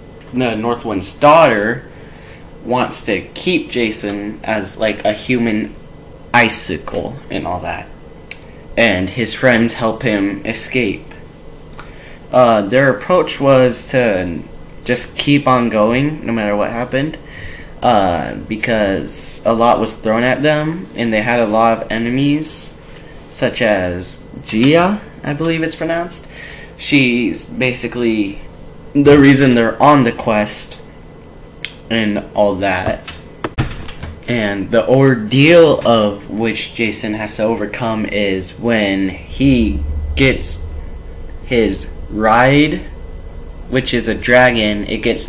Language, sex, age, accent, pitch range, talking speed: English, male, 10-29, American, 95-125 Hz, 115 wpm